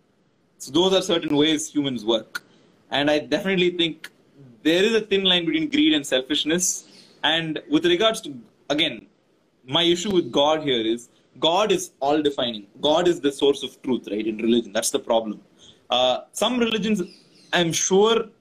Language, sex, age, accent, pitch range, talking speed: Tamil, male, 20-39, native, 125-175 Hz, 170 wpm